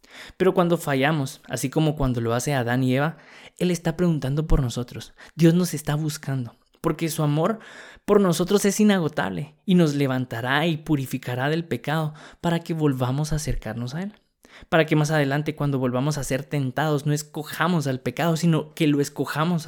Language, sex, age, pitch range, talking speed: Spanish, male, 20-39, 130-165 Hz, 175 wpm